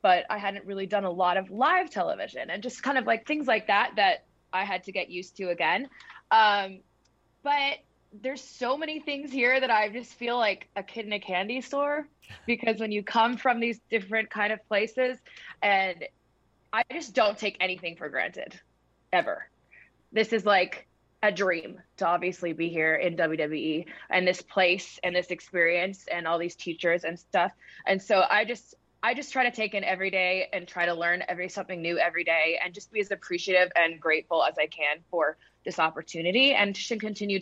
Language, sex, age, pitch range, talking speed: English, female, 20-39, 180-230 Hz, 195 wpm